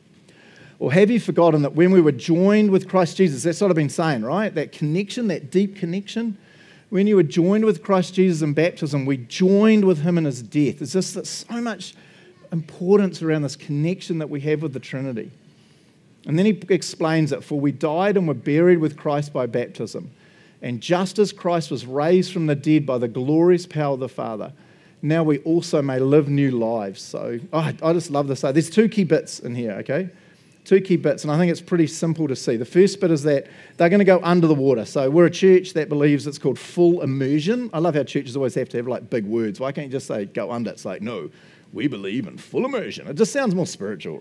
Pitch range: 155-200 Hz